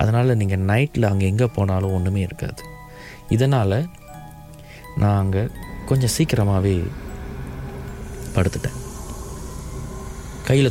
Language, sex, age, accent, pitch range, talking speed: Tamil, male, 30-49, native, 90-125 Hz, 85 wpm